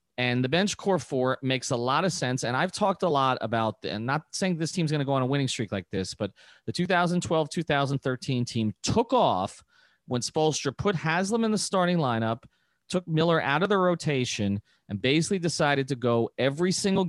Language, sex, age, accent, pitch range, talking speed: English, male, 30-49, American, 125-170 Hz, 195 wpm